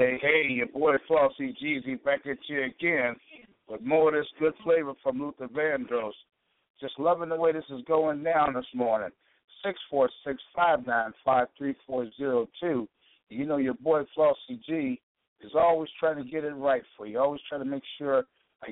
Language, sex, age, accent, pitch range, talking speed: English, male, 60-79, American, 115-155 Hz, 195 wpm